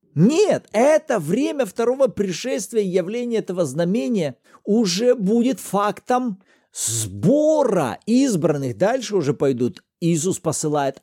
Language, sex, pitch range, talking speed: Russian, male, 170-250 Hz, 105 wpm